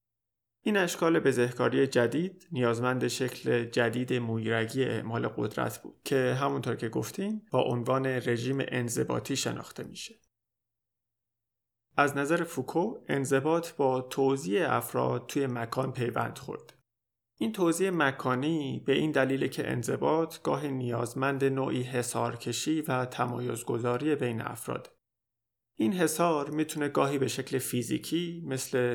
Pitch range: 120-150 Hz